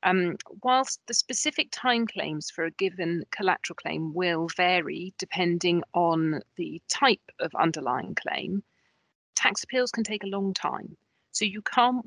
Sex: female